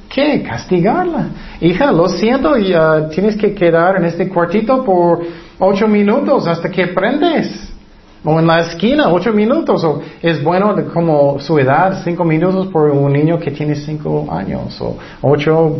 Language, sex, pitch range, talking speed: Spanish, male, 145-200 Hz, 165 wpm